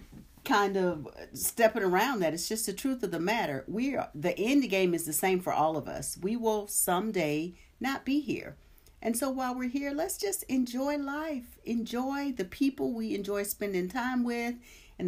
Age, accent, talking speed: 50-69, American, 190 wpm